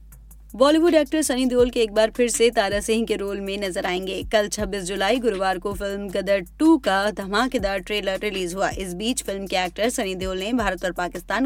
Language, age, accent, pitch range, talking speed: English, 20-39, Indian, 185-245 Hz, 205 wpm